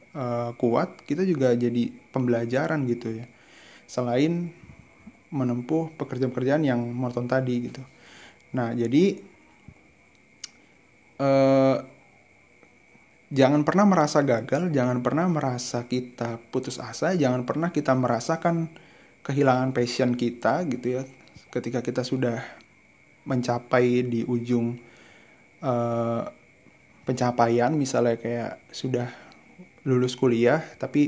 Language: Indonesian